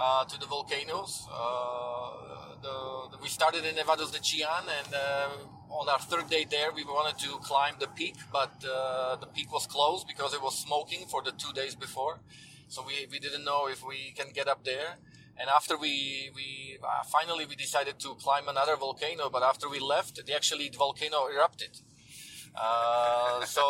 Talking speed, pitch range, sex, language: 190 wpm, 130-150 Hz, male, Hebrew